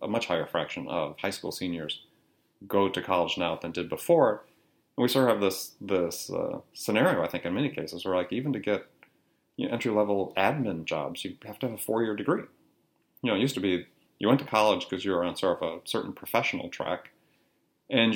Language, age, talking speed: English, 30-49, 230 wpm